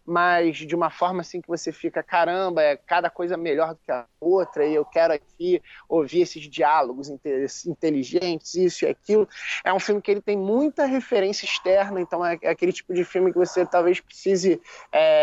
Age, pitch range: 20-39, 175-210 Hz